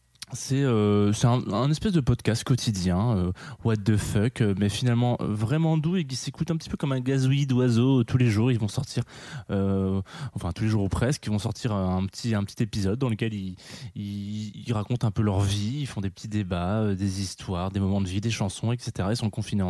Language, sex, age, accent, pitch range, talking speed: French, male, 20-39, French, 100-125 Hz, 230 wpm